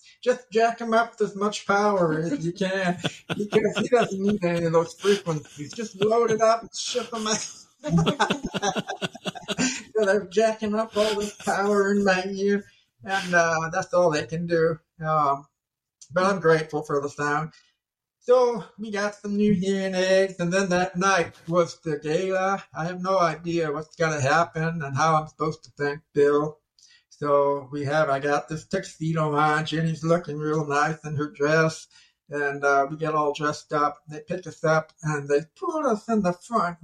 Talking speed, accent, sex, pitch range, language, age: 185 wpm, American, male, 155-205 Hz, English, 60-79